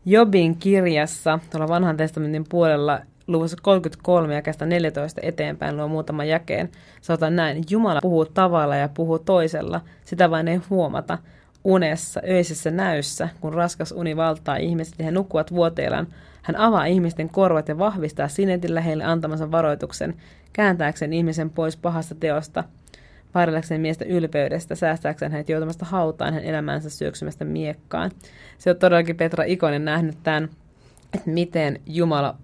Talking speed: 135 wpm